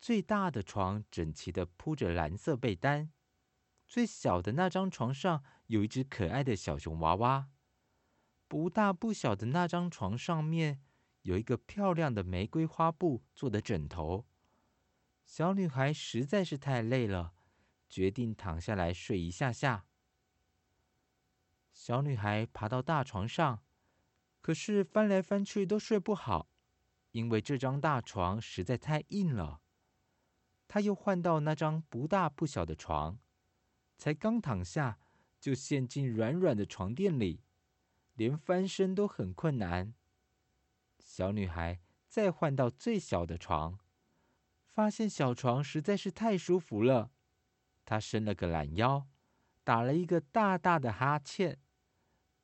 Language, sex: Chinese, male